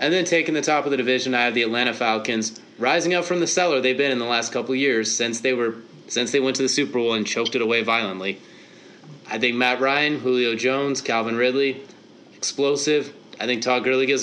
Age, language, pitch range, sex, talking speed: 30-49, English, 110-130 Hz, male, 230 wpm